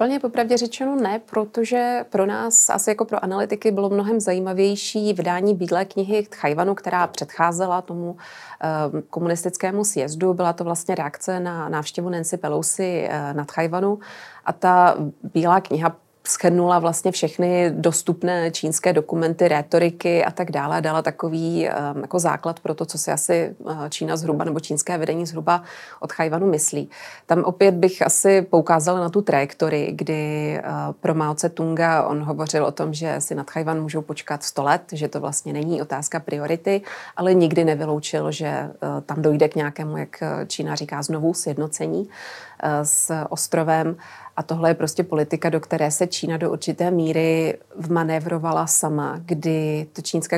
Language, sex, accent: Czech, female, native